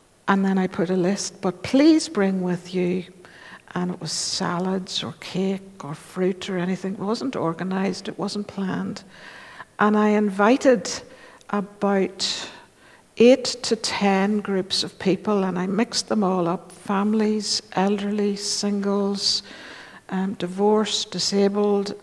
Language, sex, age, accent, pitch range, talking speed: English, female, 60-79, British, 185-215 Hz, 135 wpm